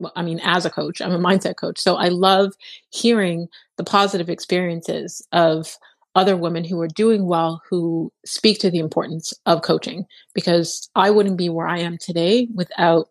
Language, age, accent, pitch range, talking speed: English, 30-49, American, 165-195 Hz, 180 wpm